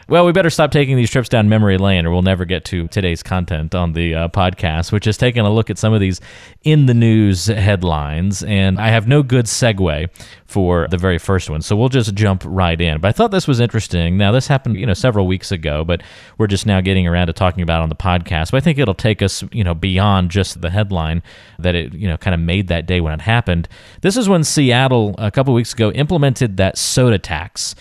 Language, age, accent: English, 30-49, American